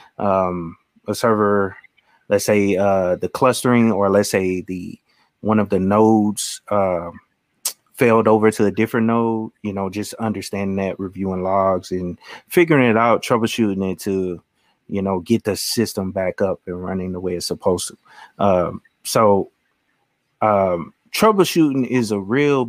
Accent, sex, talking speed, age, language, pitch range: American, male, 155 wpm, 30-49, English, 95-115 Hz